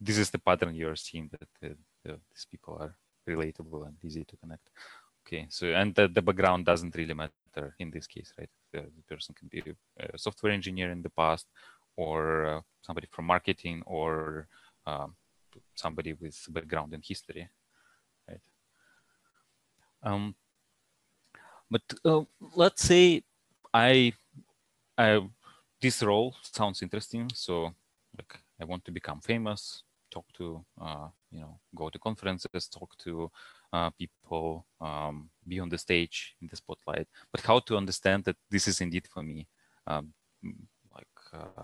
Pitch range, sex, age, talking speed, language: 80-100 Hz, male, 30-49, 150 wpm, English